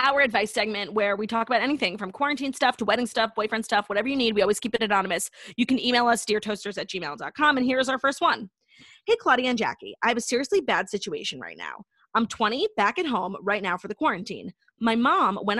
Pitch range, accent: 195-255 Hz, American